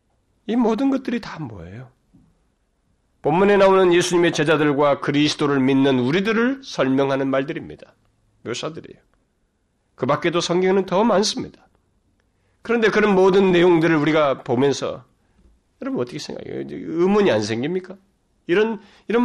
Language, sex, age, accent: Korean, male, 40-59, native